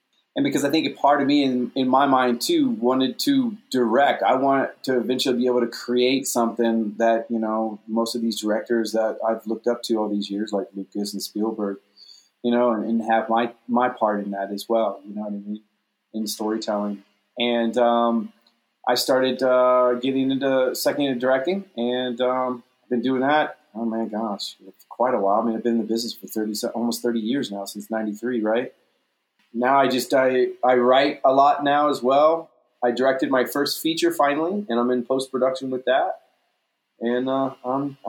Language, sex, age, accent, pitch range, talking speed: English, male, 30-49, American, 115-145 Hz, 195 wpm